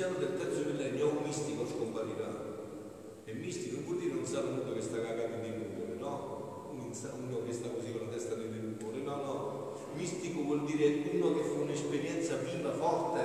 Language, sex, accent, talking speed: Italian, male, native, 180 wpm